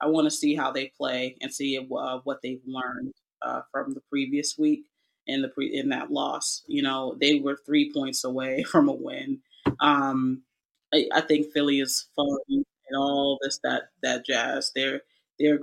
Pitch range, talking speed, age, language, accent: 140-170 Hz, 190 wpm, 30-49, English, American